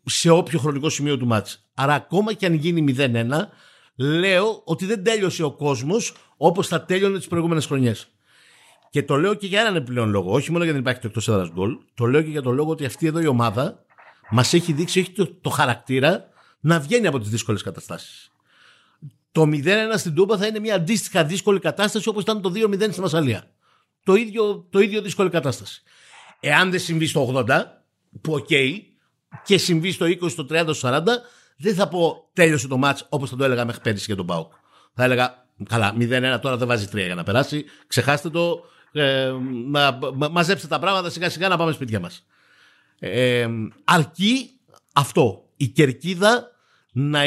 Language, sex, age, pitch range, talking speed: Greek, male, 60-79, 130-185 Hz, 185 wpm